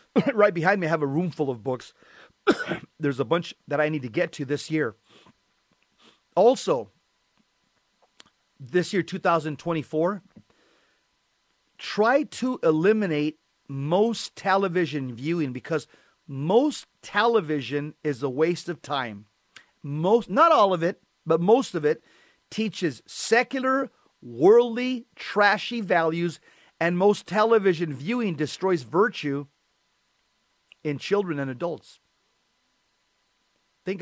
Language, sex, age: English, male, 40-59